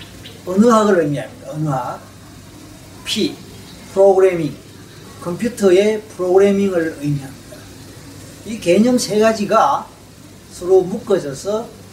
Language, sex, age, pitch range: Korean, male, 40-59, 150-210 Hz